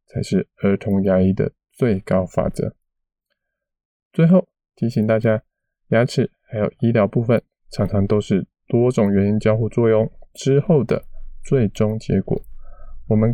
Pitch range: 105-140 Hz